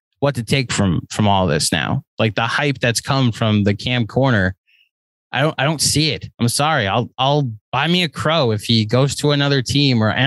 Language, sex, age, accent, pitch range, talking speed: English, male, 20-39, American, 120-160 Hz, 220 wpm